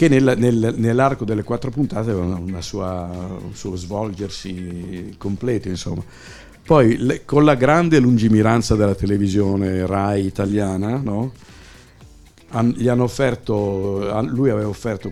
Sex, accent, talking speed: male, native, 120 wpm